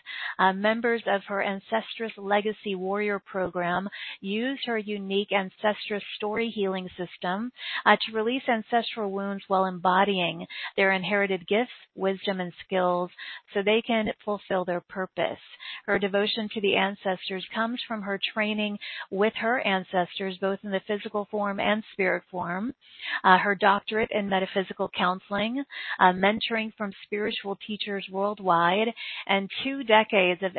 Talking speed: 140 wpm